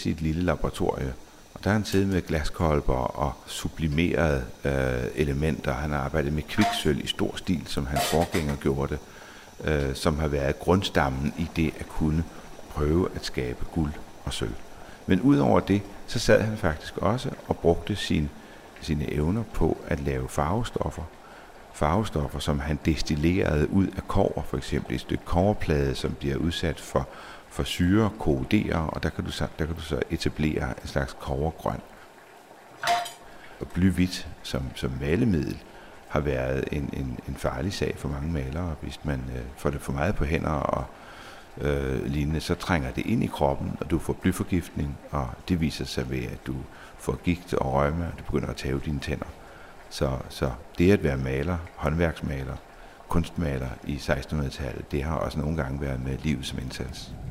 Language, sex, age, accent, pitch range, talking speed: Danish, male, 60-79, native, 70-85 Hz, 175 wpm